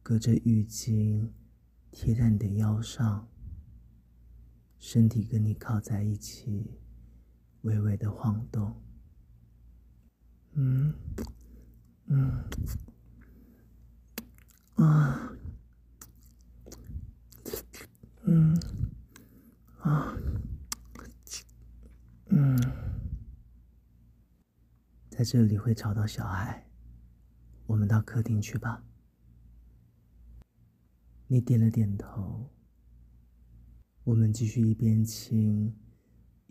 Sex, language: male, Chinese